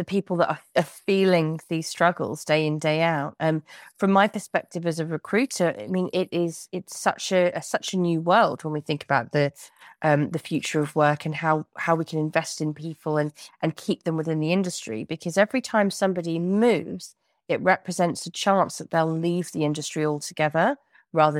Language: English